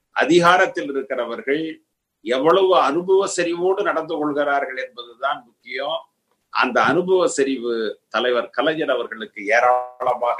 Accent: native